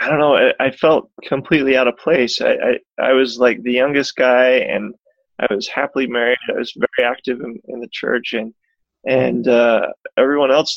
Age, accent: 20-39, American